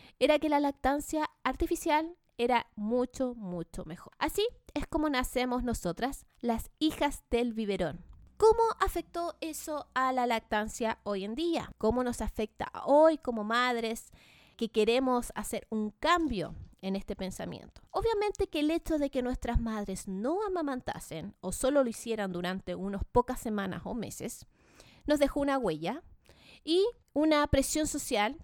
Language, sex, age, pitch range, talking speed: Spanish, female, 20-39, 205-290 Hz, 145 wpm